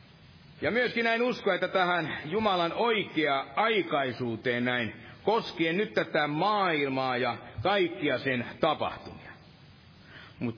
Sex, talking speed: male, 100 wpm